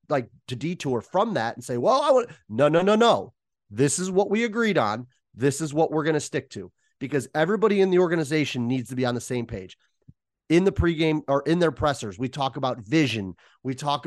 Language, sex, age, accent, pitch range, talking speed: English, male, 30-49, American, 120-155 Hz, 230 wpm